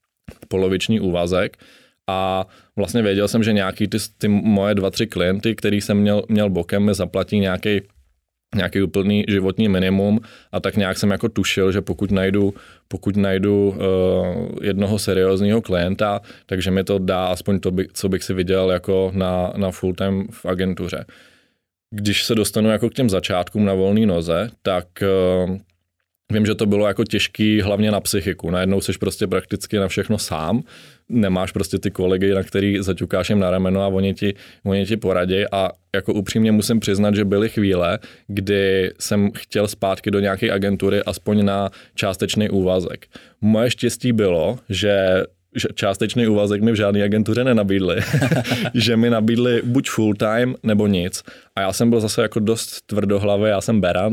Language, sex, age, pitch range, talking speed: Czech, male, 20-39, 95-105 Hz, 170 wpm